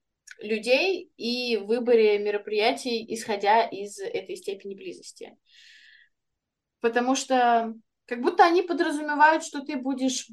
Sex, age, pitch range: female, 20-39, 225-295 Hz